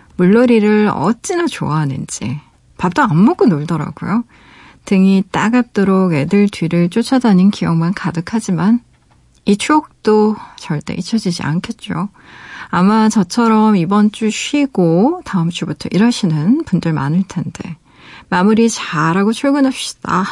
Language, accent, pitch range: Korean, native, 170-235 Hz